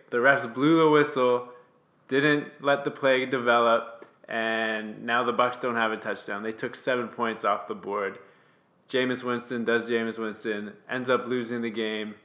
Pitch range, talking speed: 120-160 Hz, 170 wpm